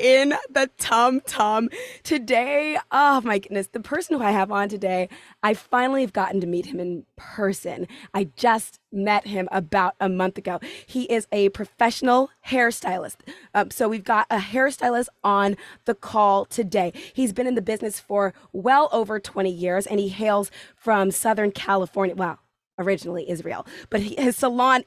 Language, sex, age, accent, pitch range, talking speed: English, female, 20-39, American, 195-265 Hz, 165 wpm